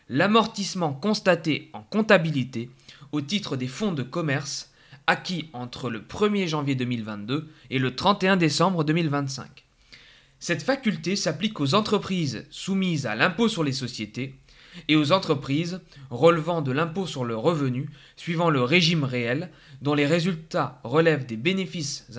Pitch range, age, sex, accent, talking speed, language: 135-180 Hz, 20-39, male, French, 140 wpm, French